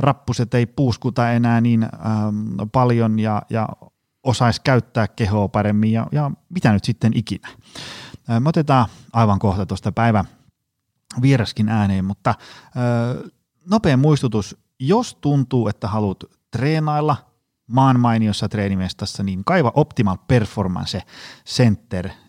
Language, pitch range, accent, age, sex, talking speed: Finnish, 100-130 Hz, native, 30-49, male, 120 wpm